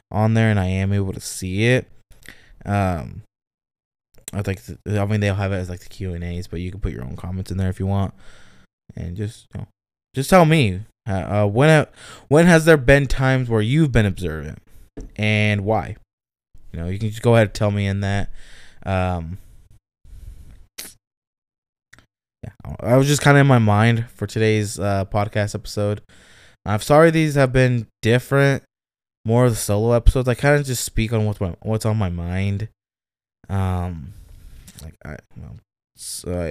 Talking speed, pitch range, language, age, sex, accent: 175 wpm, 95-120 Hz, English, 20-39, male, American